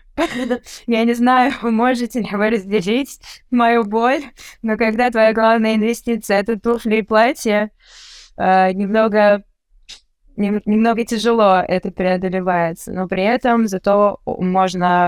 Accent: native